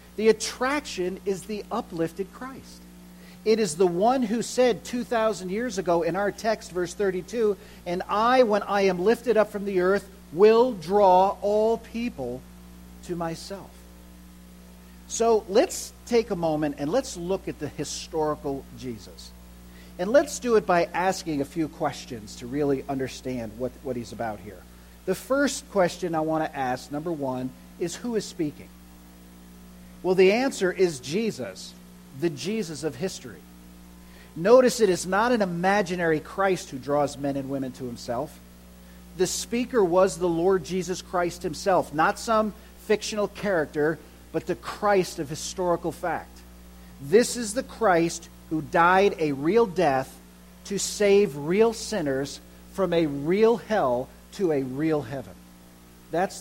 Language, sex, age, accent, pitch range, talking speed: English, male, 50-69, American, 120-200 Hz, 155 wpm